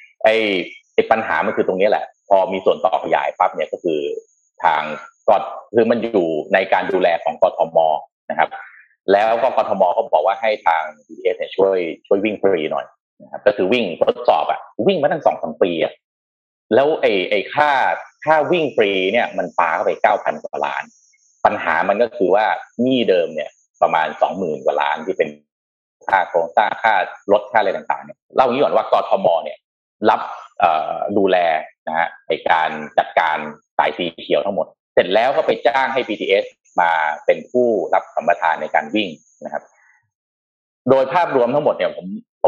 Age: 30-49